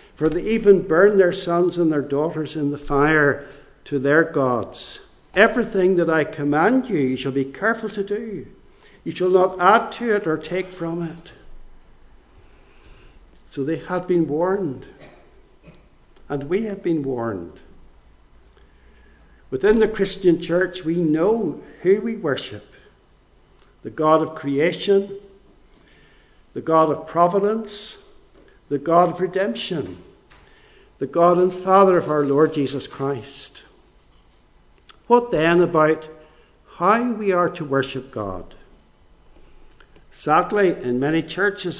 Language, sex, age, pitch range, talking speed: English, male, 60-79, 145-195 Hz, 130 wpm